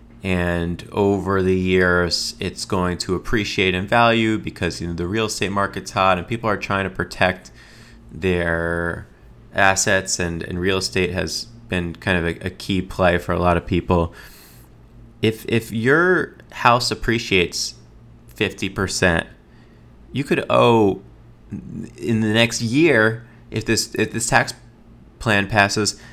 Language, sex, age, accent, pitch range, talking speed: English, male, 20-39, American, 90-115 Hz, 145 wpm